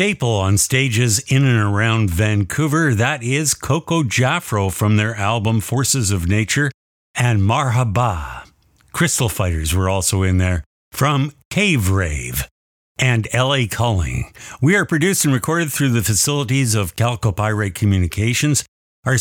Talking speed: 135 wpm